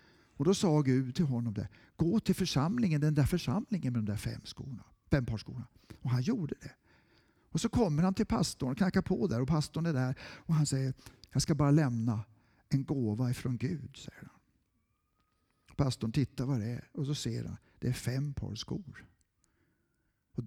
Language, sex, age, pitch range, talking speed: Swedish, male, 60-79, 120-175 Hz, 195 wpm